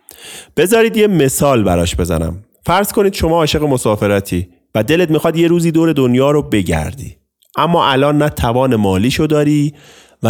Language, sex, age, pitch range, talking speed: Persian, male, 30-49, 95-125 Hz, 155 wpm